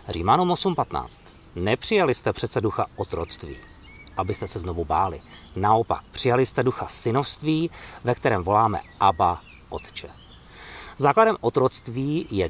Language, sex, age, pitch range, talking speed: Czech, male, 50-69, 95-150 Hz, 115 wpm